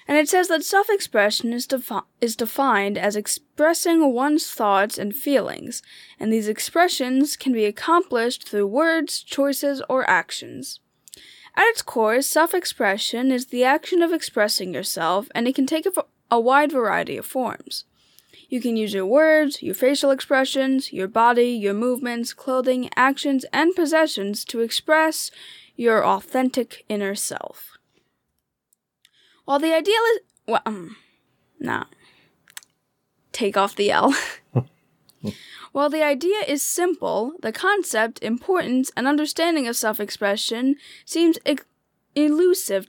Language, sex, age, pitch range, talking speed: English, female, 10-29, 225-310 Hz, 130 wpm